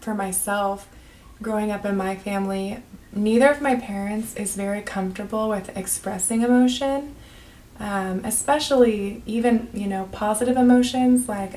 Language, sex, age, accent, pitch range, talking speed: English, female, 20-39, American, 195-220 Hz, 130 wpm